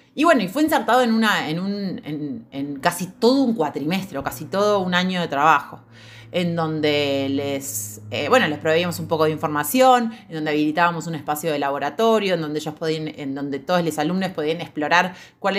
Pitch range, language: 150-210 Hz, Spanish